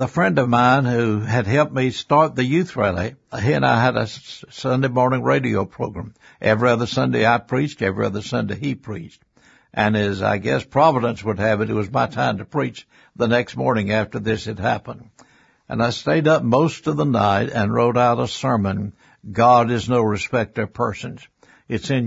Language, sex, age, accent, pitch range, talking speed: English, male, 60-79, American, 110-135 Hz, 200 wpm